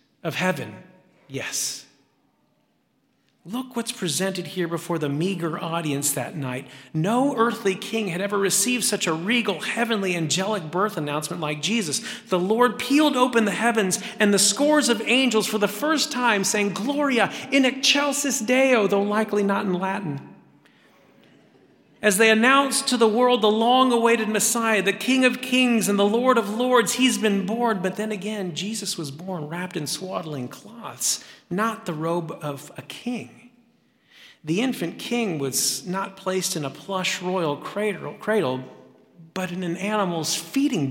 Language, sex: English, male